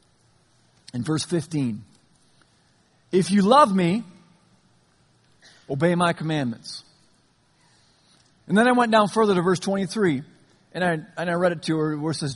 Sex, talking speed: male, 145 wpm